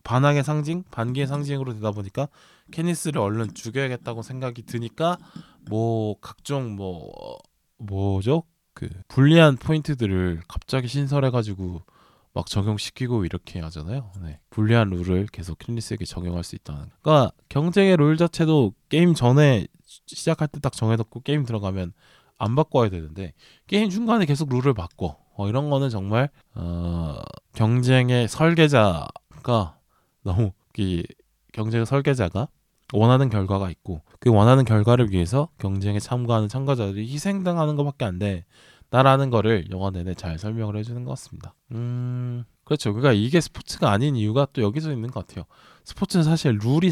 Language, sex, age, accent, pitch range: Korean, male, 20-39, native, 100-145 Hz